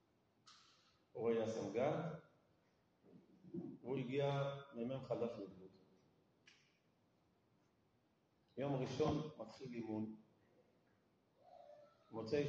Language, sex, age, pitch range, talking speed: Hebrew, male, 40-59, 110-155 Hz, 60 wpm